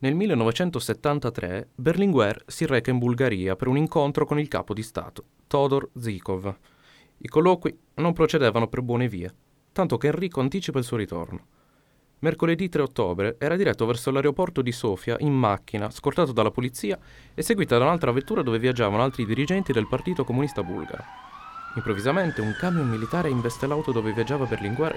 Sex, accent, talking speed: male, native, 160 wpm